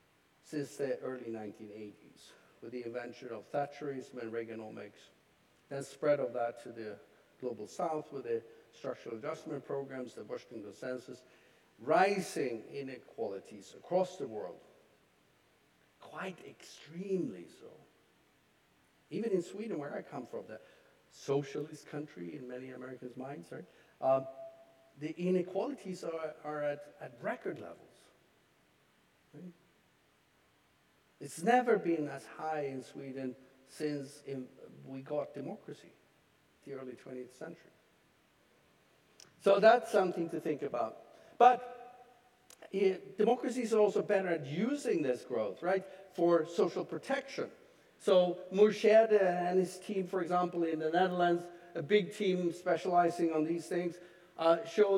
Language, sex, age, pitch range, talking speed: English, male, 50-69, 135-195 Hz, 125 wpm